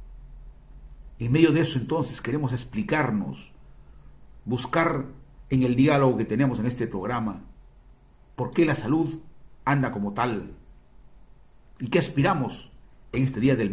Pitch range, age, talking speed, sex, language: 110-140 Hz, 50-69, 130 wpm, male, Spanish